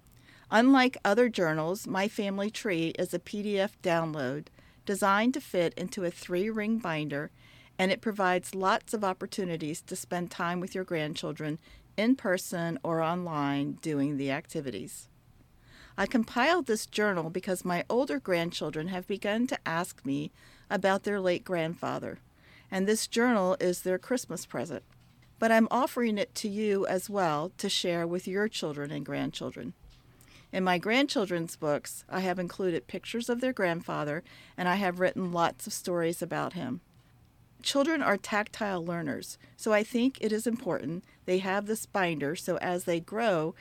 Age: 50-69